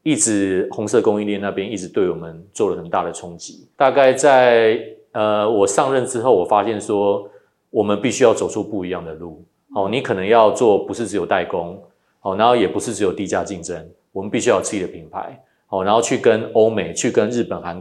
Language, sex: Chinese, male